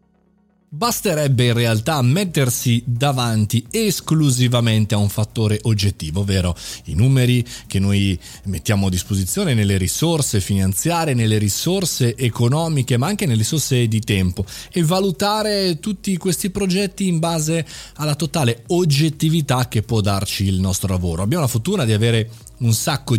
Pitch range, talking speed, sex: 110-155 Hz, 135 wpm, male